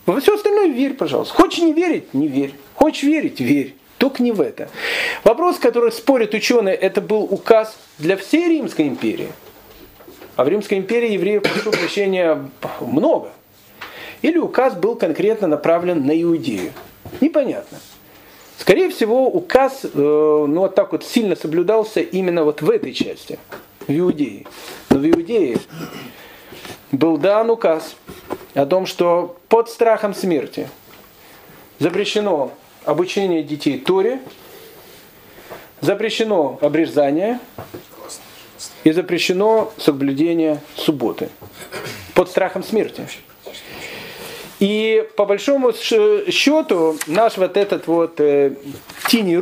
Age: 40-59